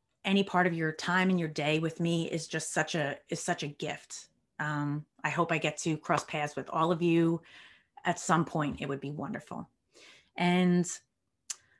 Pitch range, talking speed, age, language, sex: 150-185 Hz, 185 wpm, 30-49, English, female